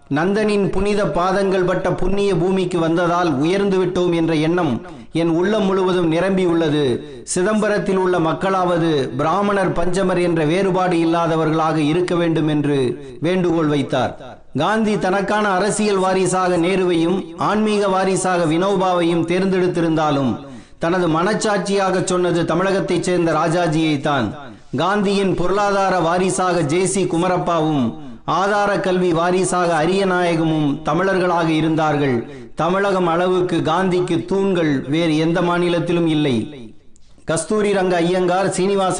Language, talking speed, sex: Tamil, 105 wpm, male